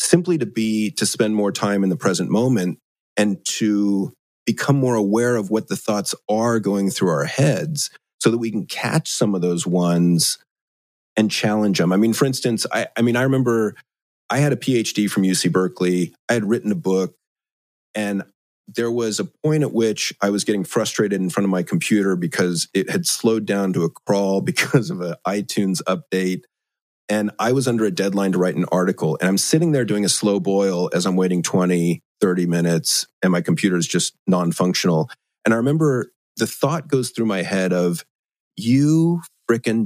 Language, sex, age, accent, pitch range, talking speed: English, male, 40-59, American, 95-125 Hz, 195 wpm